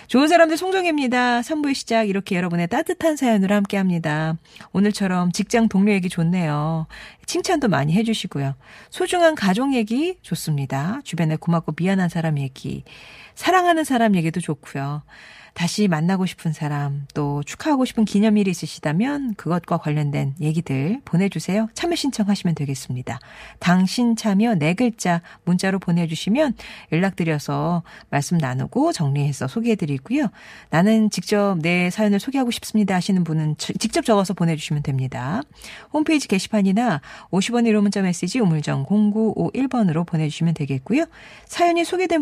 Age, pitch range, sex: 40-59, 160-235 Hz, female